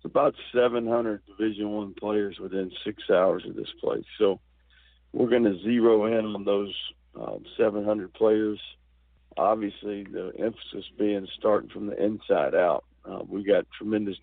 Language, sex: English, male